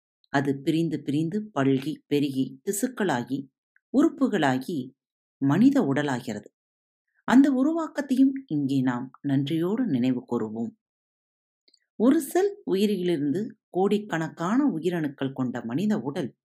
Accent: native